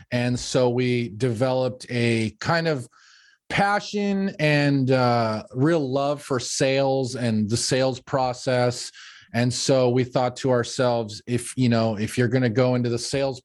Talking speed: 155 wpm